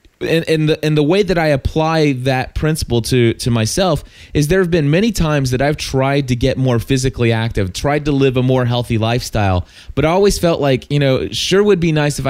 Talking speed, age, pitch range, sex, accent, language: 230 wpm, 20-39, 120-160 Hz, male, American, English